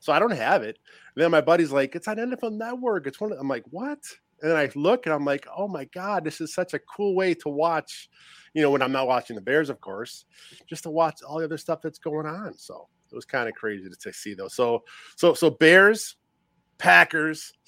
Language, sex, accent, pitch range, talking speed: English, male, American, 130-170 Hz, 245 wpm